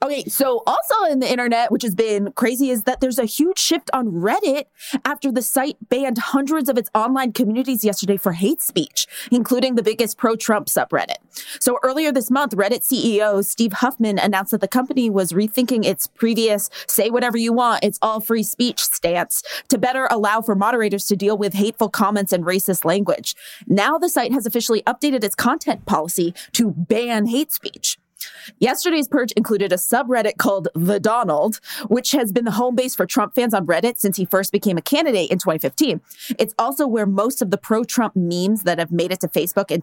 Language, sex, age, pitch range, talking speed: English, female, 20-39, 195-250 Hz, 185 wpm